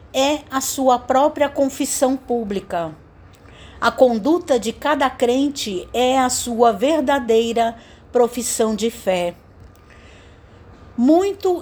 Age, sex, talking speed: 60-79, female, 100 wpm